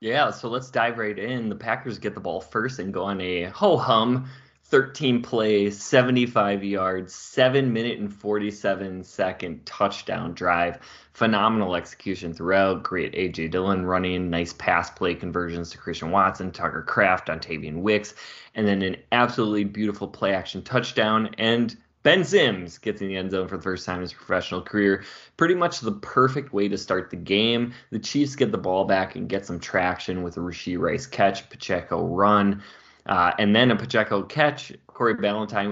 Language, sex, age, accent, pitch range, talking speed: English, male, 20-39, American, 90-110 Hz, 165 wpm